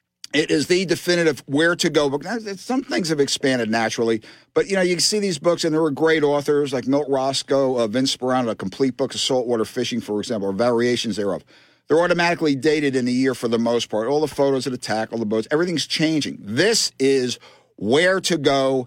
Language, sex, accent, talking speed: English, male, American, 210 wpm